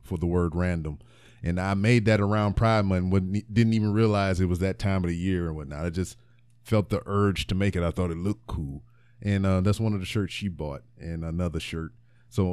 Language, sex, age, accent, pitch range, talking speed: English, male, 30-49, American, 95-120 Hz, 235 wpm